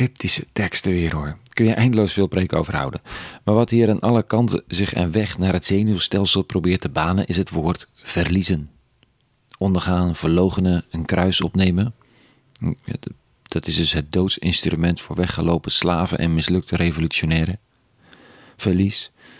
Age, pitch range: 40-59, 90-115 Hz